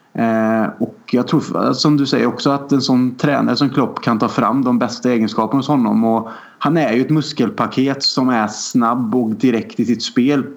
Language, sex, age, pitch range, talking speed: Swedish, male, 30-49, 120-150 Hz, 200 wpm